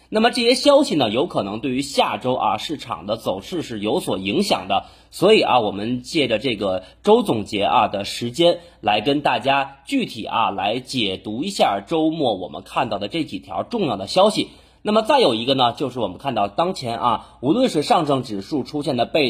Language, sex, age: Chinese, male, 30-49